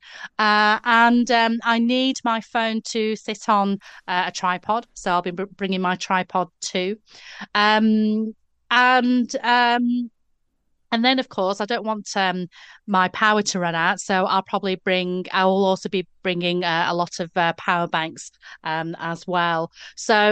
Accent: British